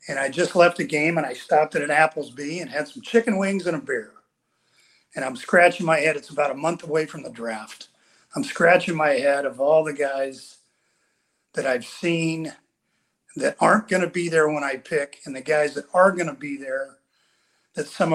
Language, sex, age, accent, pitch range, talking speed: English, male, 50-69, American, 145-180 Hz, 210 wpm